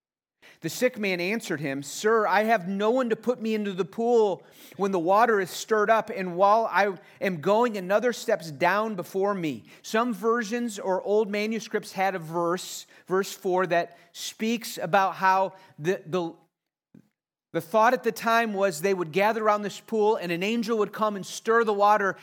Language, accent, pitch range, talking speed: English, American, 145-205 Hz, 185 wpm